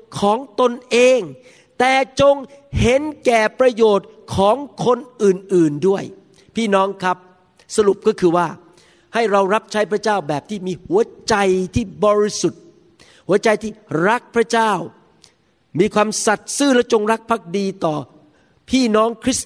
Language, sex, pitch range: Thai, male, 175-225 Hz